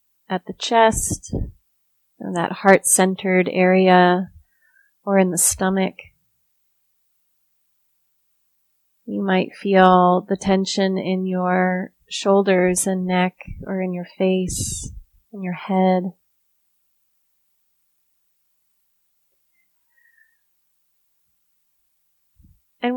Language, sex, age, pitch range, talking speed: English, female, 30-49, 185-230 Hz, 75 wpm